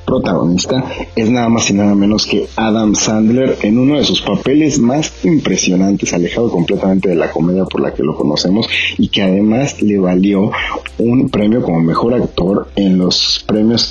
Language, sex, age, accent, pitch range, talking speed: Spanish, male, 40-59, Mexican, 90-125 Hz, 175 wpm